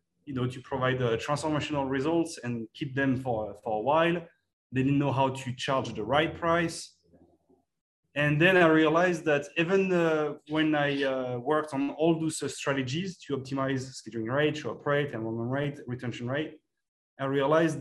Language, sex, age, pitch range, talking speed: English, male, 30-49, 130-160 Hz, 175 wpm